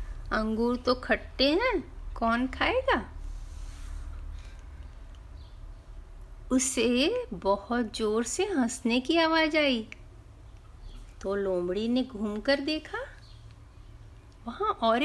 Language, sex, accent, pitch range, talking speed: Hindi, female, native, 200-300 Hz, 85 wpm